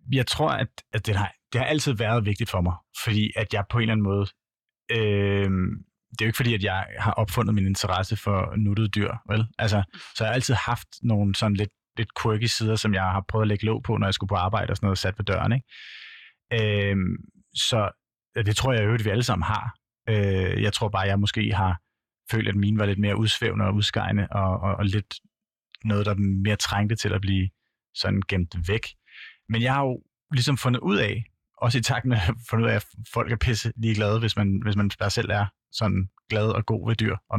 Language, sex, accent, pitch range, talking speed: Danish, male, native, 100-120 Hz, 230 wpm